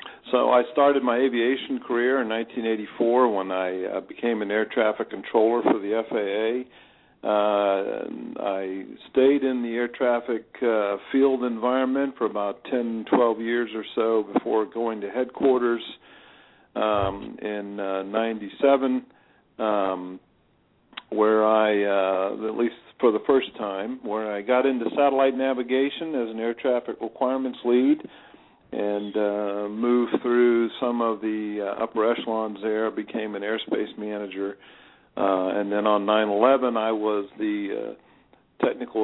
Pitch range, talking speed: 100-120 Hz, 140 wpm